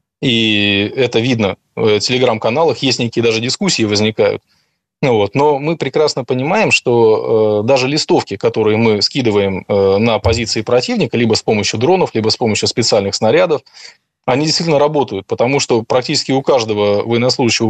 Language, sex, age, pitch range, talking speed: Russian, male, 20-39, 110-135 Hz, 140 wpm